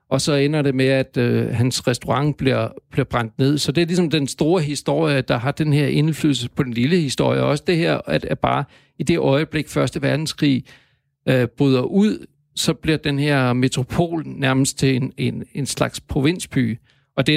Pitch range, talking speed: 125-150 Hz, 195 wpm